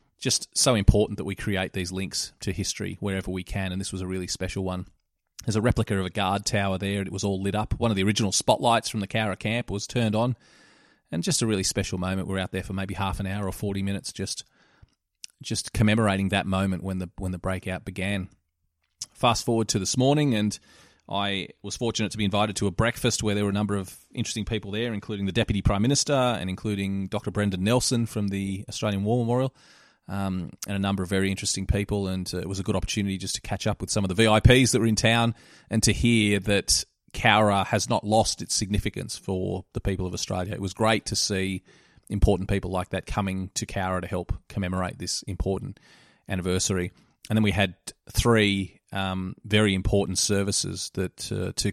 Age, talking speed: 30-49, 215 wpm